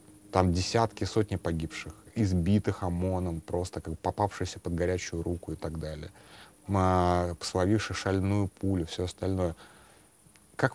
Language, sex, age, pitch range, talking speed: Russian, male, 30-49, 85-100 Hz, 115 wpm